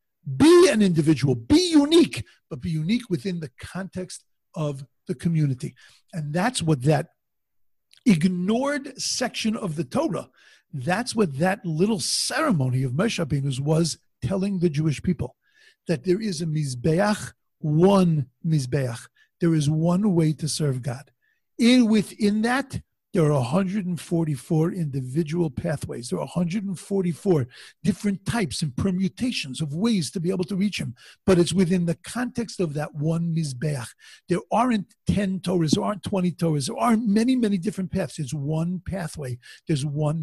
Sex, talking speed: male, 150 wpm